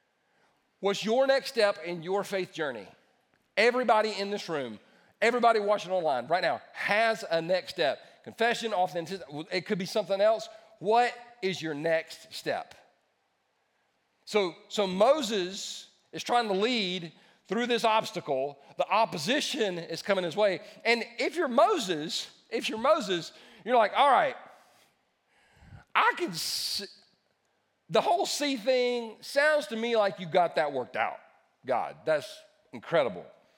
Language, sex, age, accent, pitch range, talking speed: English, male, 40-59, American, 165-230 Hz, 140 wpm